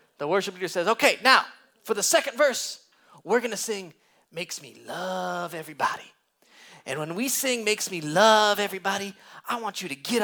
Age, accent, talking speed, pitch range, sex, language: 30-49, American, 180 wpm, 160-215 Hz, male, English